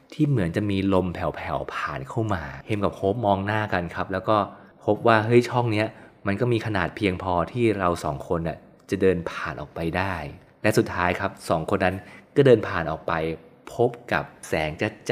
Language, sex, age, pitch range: Thai, male, 20-39, 95-120 Hz